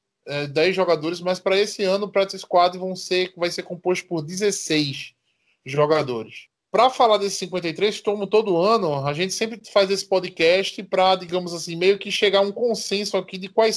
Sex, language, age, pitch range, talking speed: male, Portuguese, 20-39, 165-205 Hz, 180 wpm